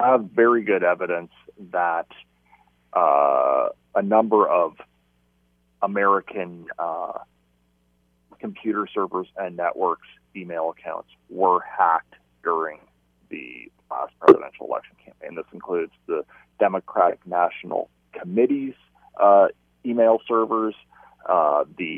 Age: 40-59